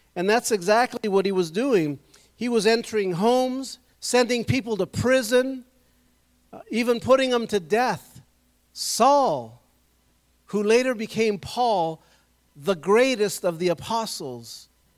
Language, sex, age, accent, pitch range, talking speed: English, male, 50-69, American, 150-210 Hz, 120 wpm